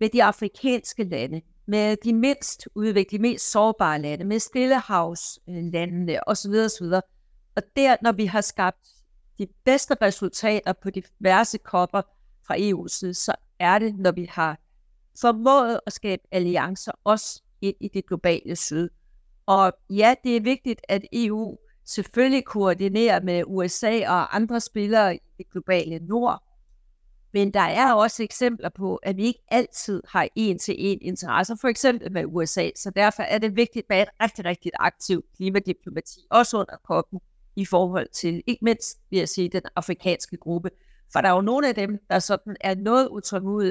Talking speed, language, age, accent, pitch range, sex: 165 wpm, Danish, 60-79, native, 185-225 Hz, female